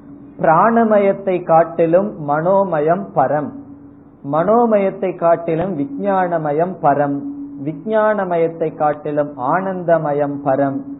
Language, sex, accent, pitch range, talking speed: Tamil, male, native, 145-200 Hz, 65 wpm